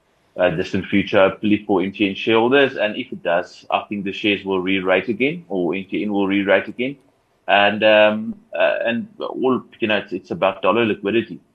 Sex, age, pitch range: male, 30-49, 95-110 Hz